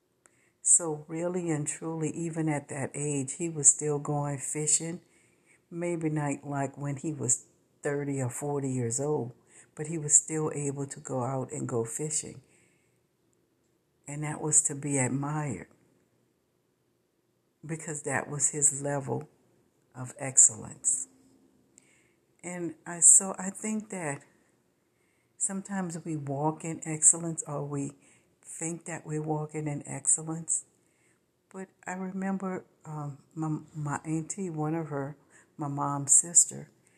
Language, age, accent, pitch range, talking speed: English, 60-79, American, 140-165 Hz, 130 wpm